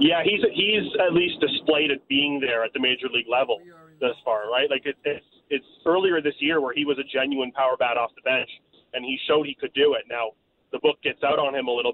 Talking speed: 250 wpm